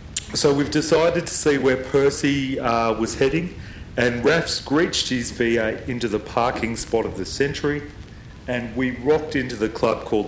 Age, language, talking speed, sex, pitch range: 40-59, English, 170 wpm, male, 100-130 Hz